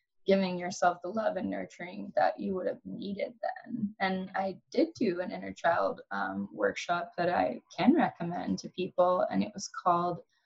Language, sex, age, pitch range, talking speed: English, female, 20-39, 180-220 Hz, 180 wpm